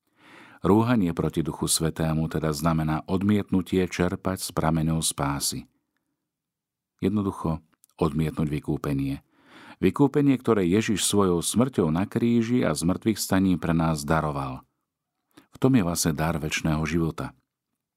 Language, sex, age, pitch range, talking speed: Slovak, male, 50-69, 80-95 Hz, 115 wpm